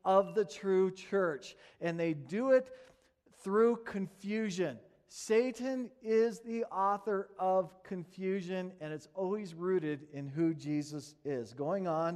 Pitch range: 155-225 Hz